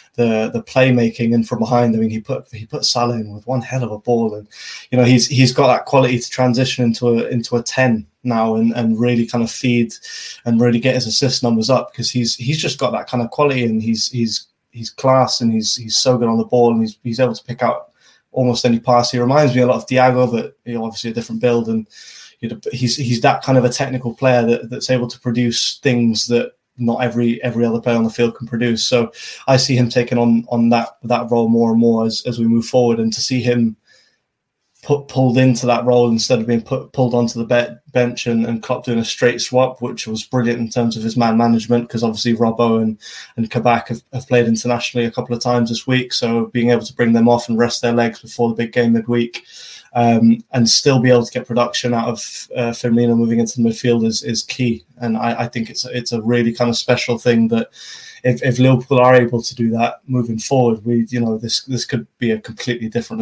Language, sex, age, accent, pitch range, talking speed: English, male, 20-39, British, 115-125 Hz, 245 wpm